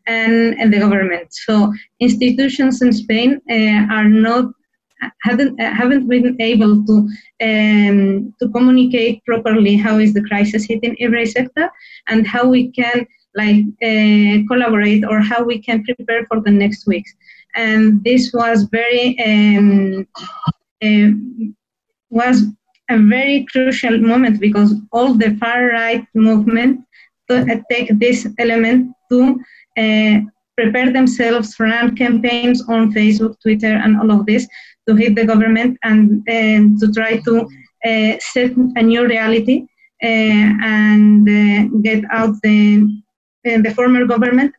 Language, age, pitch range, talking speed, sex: English, 20-39, 215-245 Hz, 135 wpm, female